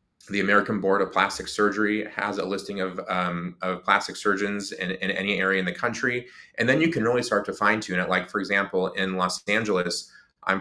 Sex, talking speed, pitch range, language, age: male, 210 wpm, 90-100 Hz, English, 30-49